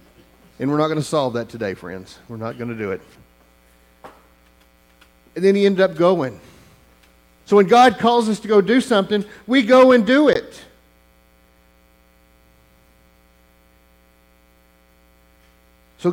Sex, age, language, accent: male, 50-69, English, American